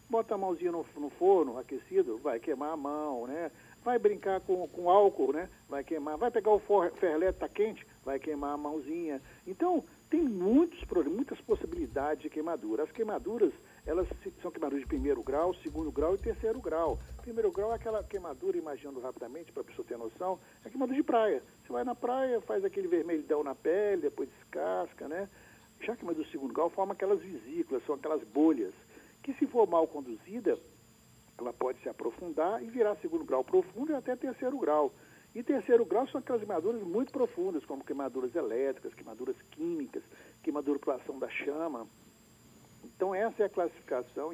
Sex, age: male, 60-79